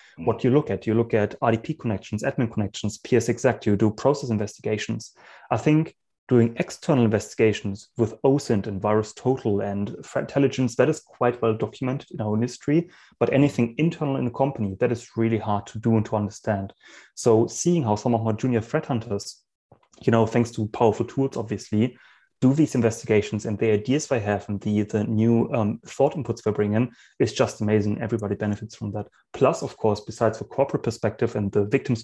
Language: English